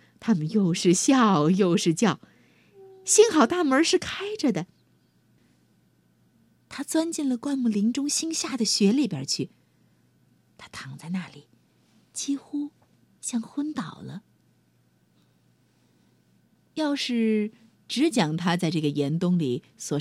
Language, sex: Chinese, female